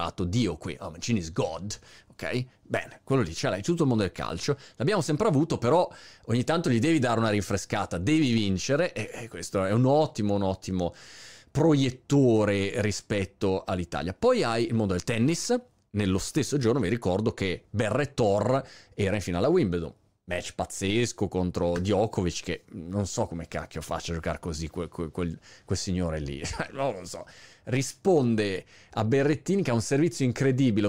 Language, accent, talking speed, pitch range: Italian, native, 170 wpm, 95-130 Hz